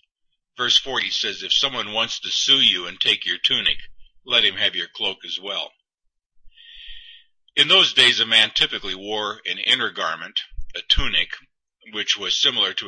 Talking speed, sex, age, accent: 170 wpm, male, 50-69, American